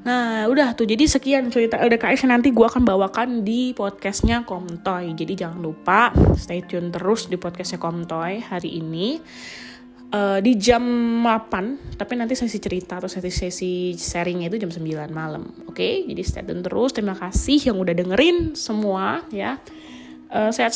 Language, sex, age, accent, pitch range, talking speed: Indonesian, female, 20-39, native, 180-245 Hz, 160 wpm